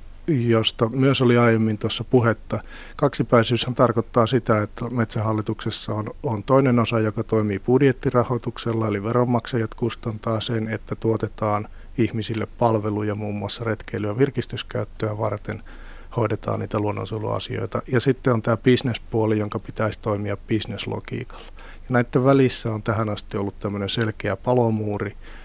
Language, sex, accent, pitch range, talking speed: Finnish, male, native, 105-120 Hz, 125 wpm